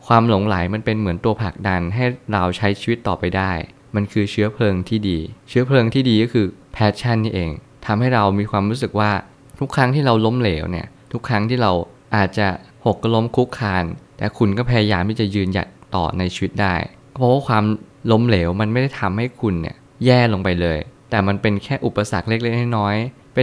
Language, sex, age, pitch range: Thai, male, 20-39, 95-120 Hz